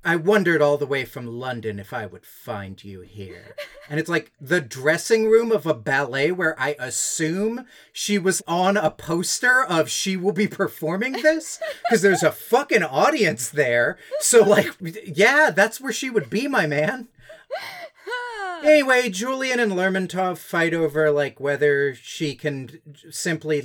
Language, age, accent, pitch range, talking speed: English, 40-59, American, 145-215 Hz, 160 wpm